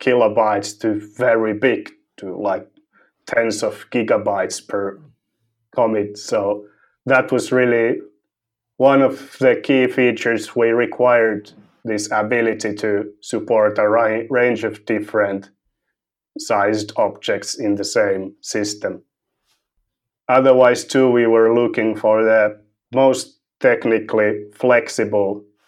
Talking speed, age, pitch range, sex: 105 wpm, 30-49, 105-120 Hz, male